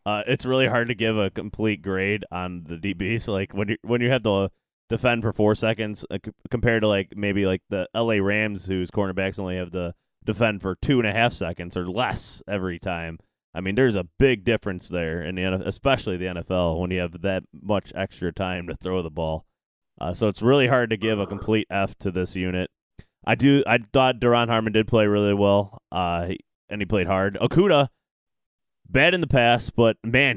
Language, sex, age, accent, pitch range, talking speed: English, male, 20-39, American, 95-125 Hz, 215 wpm